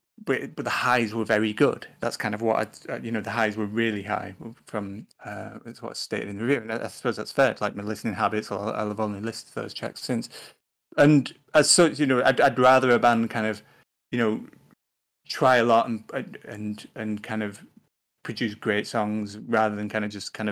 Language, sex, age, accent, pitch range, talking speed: English, male, 30-49, British, 105-125 Hz, 220 wpm